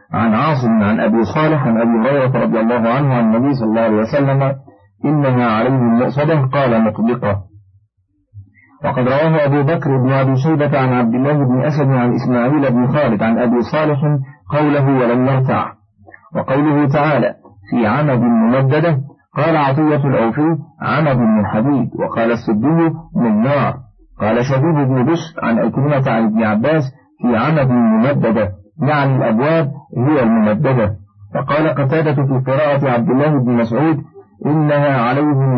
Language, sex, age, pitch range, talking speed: Arabic, male, 50-69, 115-150 Hz, 145 wpm